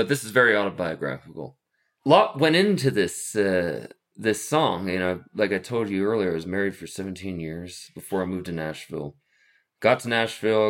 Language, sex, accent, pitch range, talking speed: English, male, American, 85-110 Hz, 185 wpm